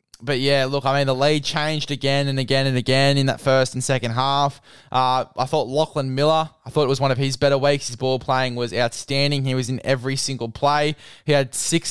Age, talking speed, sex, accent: 10-29, 235 wpm, male, Australian